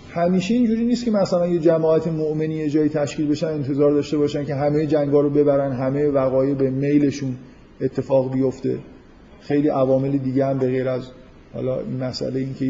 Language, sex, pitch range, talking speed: Persian, male, 140-170 Hz, 170 wpm